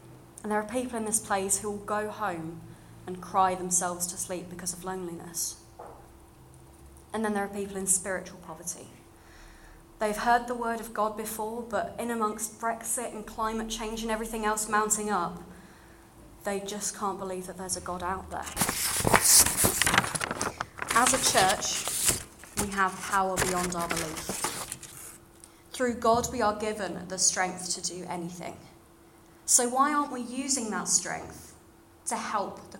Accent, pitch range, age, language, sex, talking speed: British, 180-230 Hz, 30-49, English, female, 155 wpm